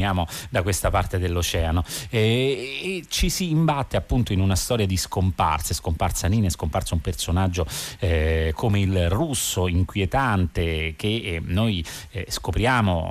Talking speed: 130 wpm